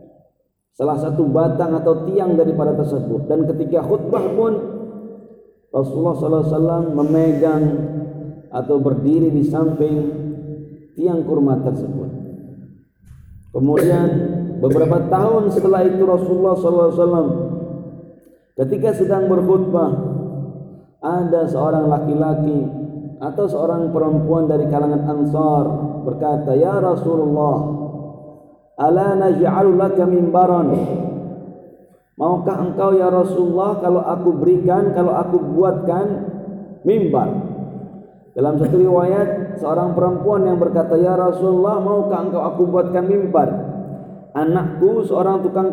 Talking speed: 95 wpm